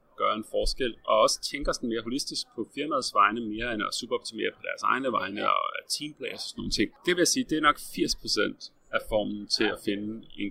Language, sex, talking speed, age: English, male, 240 wpm, 30-49